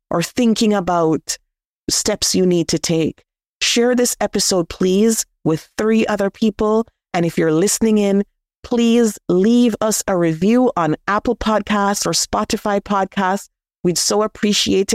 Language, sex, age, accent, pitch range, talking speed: English, female, 30-49, American, 175-210 Hz, 140 wpm